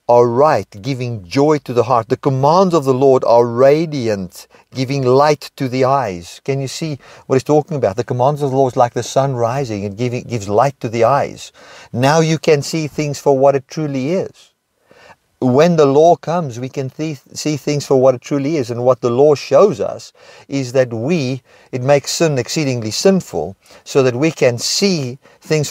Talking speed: 200 wpm